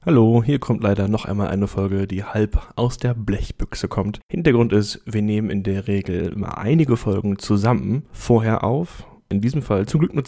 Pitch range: 100-120 Hz